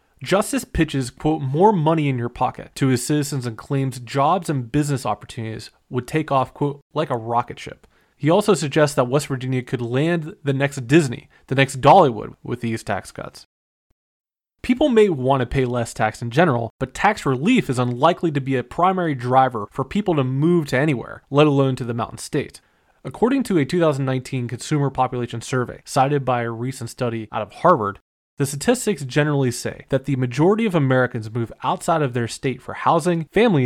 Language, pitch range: English, 120-155 Hz